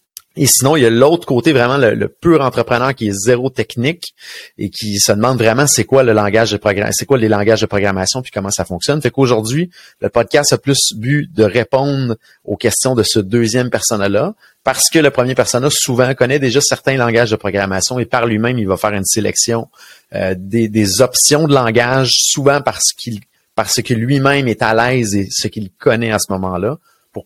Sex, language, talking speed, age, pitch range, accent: male, French, 215 wpm, 30-49, 105-135 Hz, Canadian